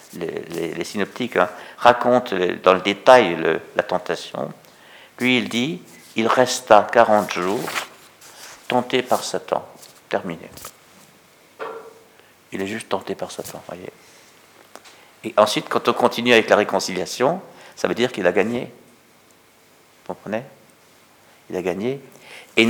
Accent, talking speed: French, 130 wpm